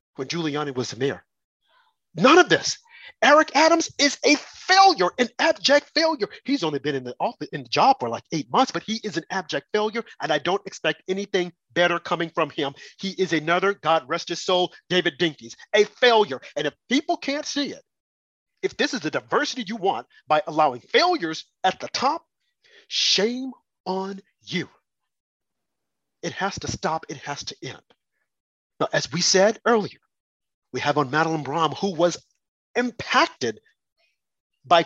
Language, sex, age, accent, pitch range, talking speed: English, male, 40-59, American, 165-255 Hz, 170 wpm